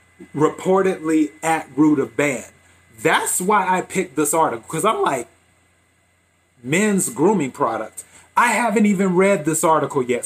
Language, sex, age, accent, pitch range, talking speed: English, male, 30-49, American, 125-180 Hz, 140 wpm